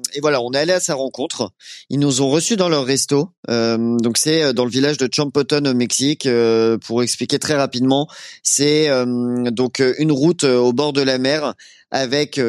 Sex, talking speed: male, 195 wpm